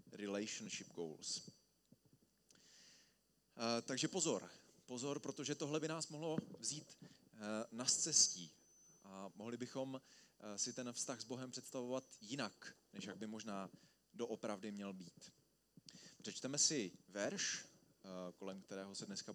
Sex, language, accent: male, Czech, native